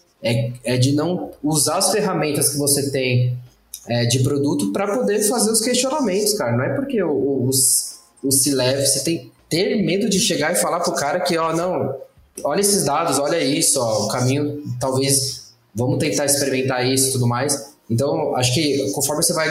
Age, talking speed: 20-39, 200 wpm